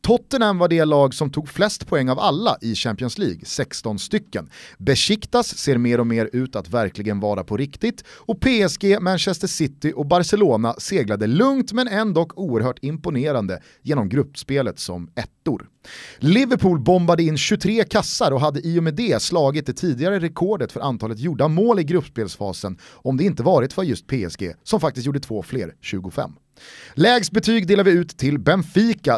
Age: 30-49